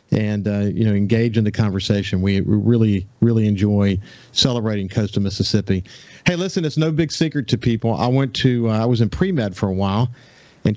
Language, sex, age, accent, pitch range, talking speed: English, male, 50-69, American, 105-120 Hz, 200 wpm